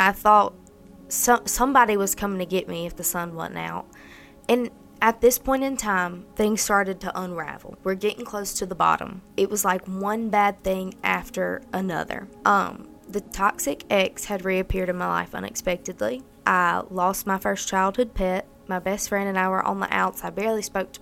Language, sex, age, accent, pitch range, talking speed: English, female, 20-39, American, 185-210 Hz, 190 wpm